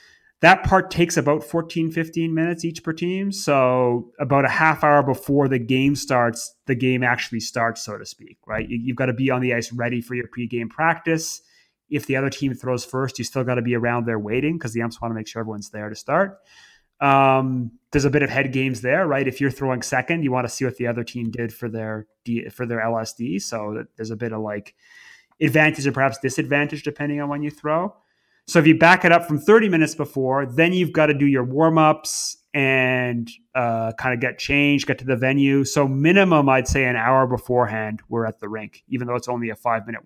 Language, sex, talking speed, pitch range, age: English, male, 225 wpm, 120-150 Hz, 30-49